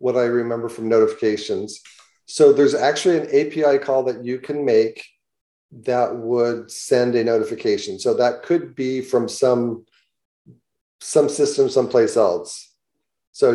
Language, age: English, 40-59